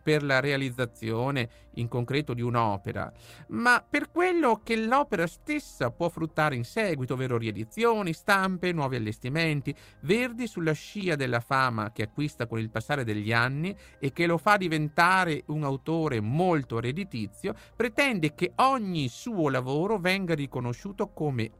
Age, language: 50-69, Italian